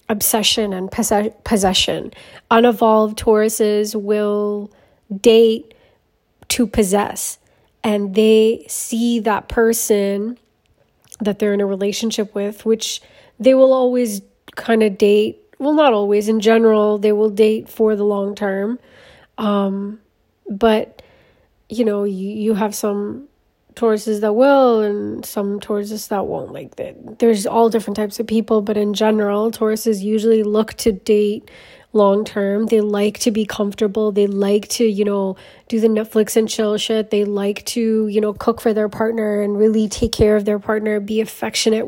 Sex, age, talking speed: female, 20-39, 150 wpm